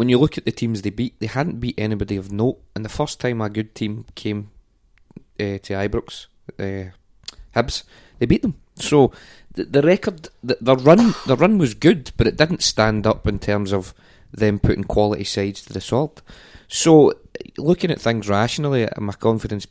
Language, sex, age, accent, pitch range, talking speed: English, male, 20-39, British, 100-115 Hz, 190 wpm